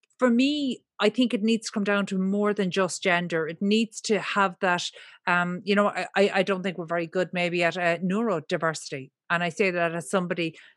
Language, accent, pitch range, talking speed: English, Irish, 185-230 Hz, 210 wpm